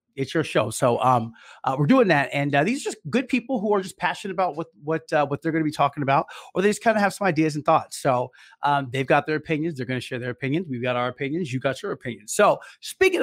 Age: 30-49